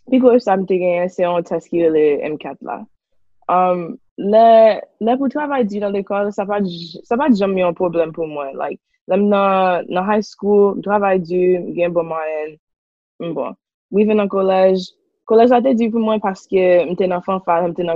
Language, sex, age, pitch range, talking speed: English, female, 20-39, 170-210 Hz, 125 wpm